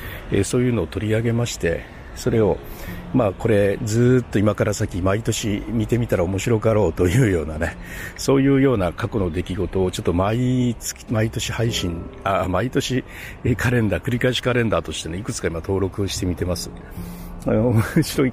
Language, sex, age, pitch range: Japanese, male, 60-79, 90-120 Hz